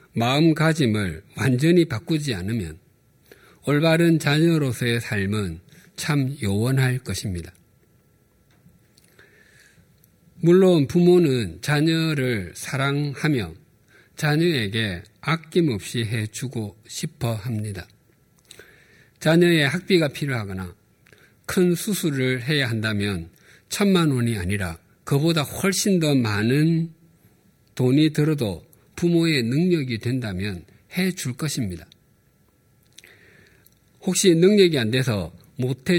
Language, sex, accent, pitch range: Korean, male, native, 110-160 Hz